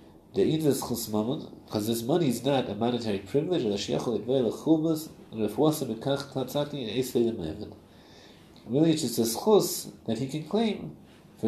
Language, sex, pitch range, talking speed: English, male, 105-150 Hz, 100 wpm